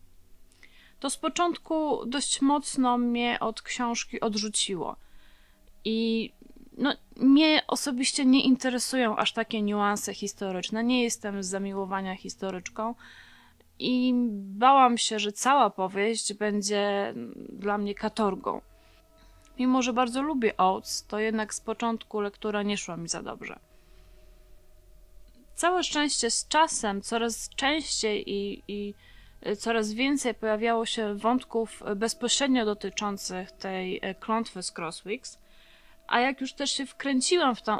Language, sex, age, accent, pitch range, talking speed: Polish, female, 20-39, native, 200-255 Hz, 115 wpm